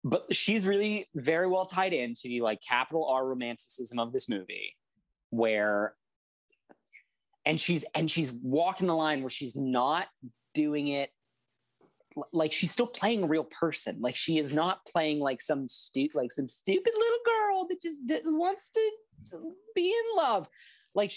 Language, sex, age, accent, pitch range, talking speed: English, male, 30-49, American, 125-185 Hz, 160 wpm